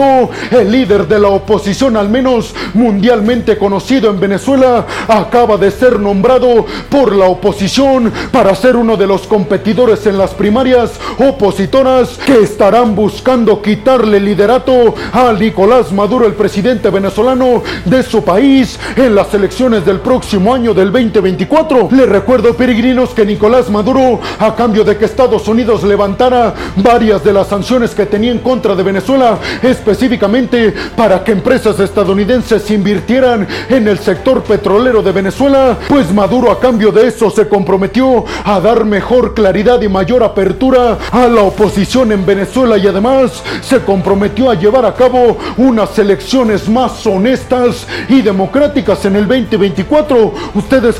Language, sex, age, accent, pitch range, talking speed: Spanish, male, 40-59, Mexican, 205-250 Hz, 145 wpm